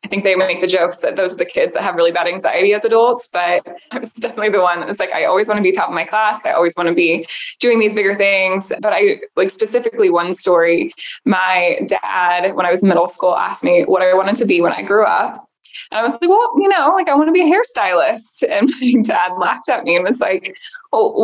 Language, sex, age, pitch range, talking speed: English, female, 20-39, 185-285 Hz, 265 wpm